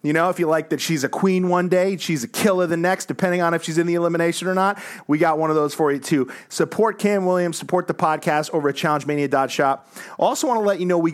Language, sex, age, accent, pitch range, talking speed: English, male, 30-49, American, 140-180 Hz, 265 wpm